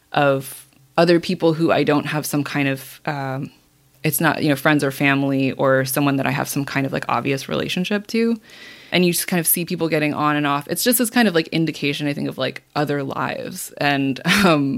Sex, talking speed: female, 225 wpm